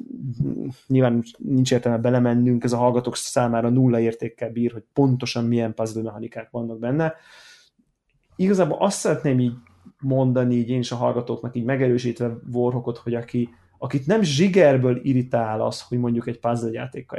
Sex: male